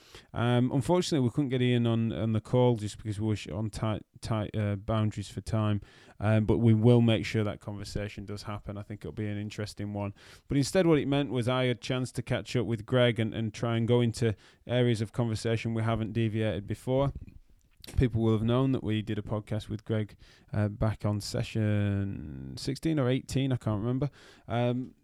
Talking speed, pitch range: 210 wpm, 100-115 Hz